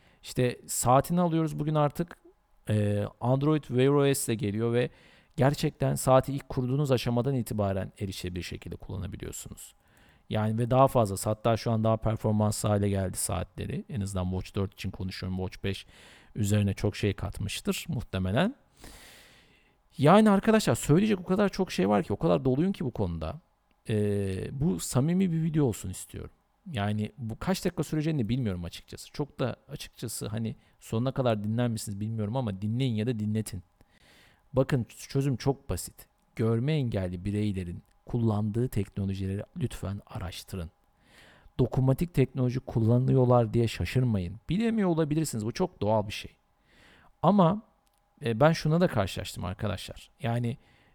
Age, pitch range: 50-69, 100-140 Hz